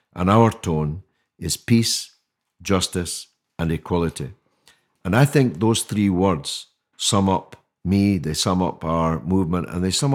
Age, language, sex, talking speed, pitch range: 50-69, English, male, 150 wpm, 85-115 Hz